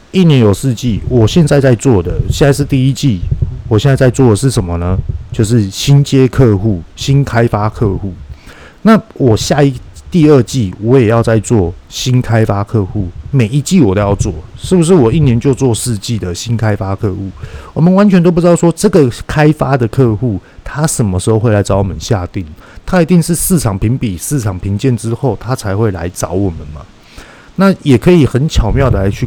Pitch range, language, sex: 100-140 Hz, Chinese, male